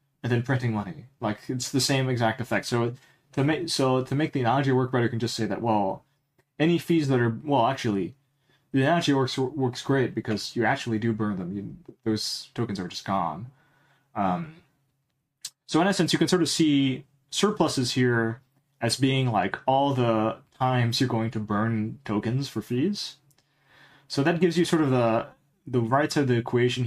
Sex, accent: male, American